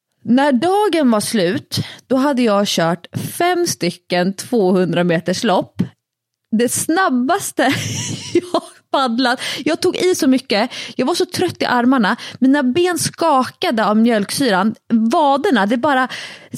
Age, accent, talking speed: 30-49, Swedish, 130 wpm